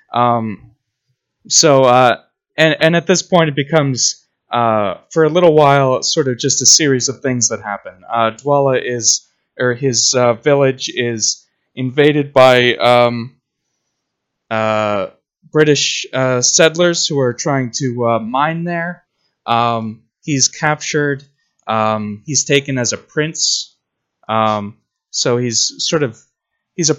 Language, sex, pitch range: English, male, 110-140 Hz